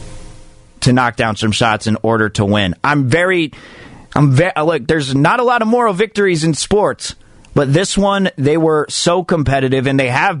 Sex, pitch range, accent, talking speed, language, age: male, 125-160 Hz, American, 190 wpm, English, 30-49